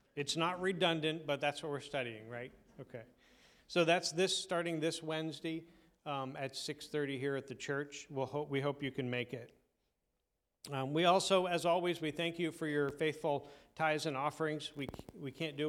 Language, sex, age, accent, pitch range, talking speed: English, male, 40-59, American, 130-155 Hz, 185 wpm